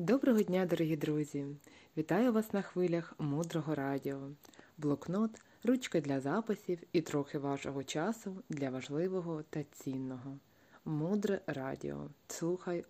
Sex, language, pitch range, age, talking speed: female, Ukrainian, 145-190 Hz, 30-49, 115 wpm